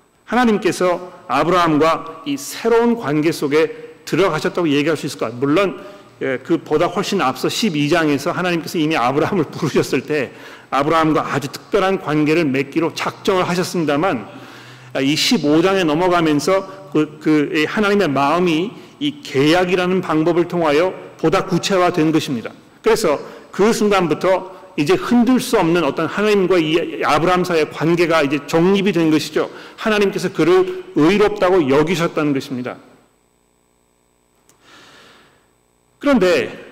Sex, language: male, Korean